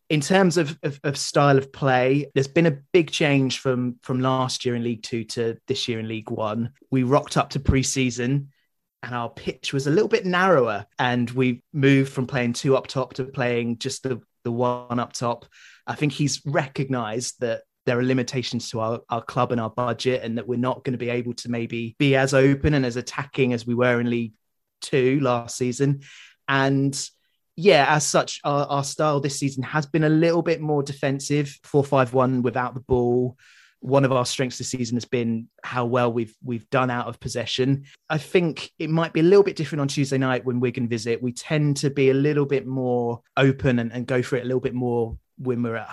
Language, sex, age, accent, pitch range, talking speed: English, male, 20-39, British, 120-140 Hz, 215 wpm